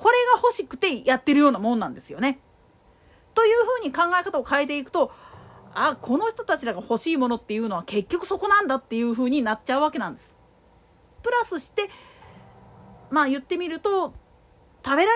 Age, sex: 40-59, female